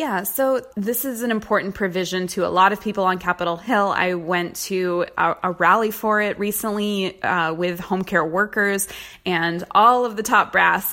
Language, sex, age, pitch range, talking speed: English, female, 20-39, 175-200 Hz, 190 wpm